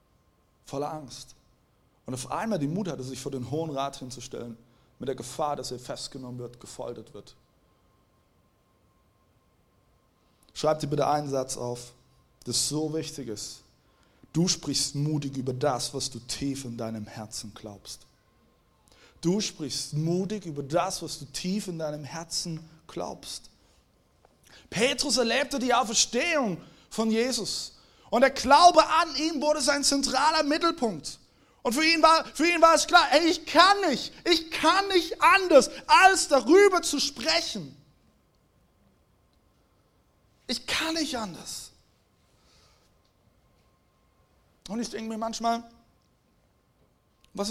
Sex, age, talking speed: male, 30-49, 125 wpm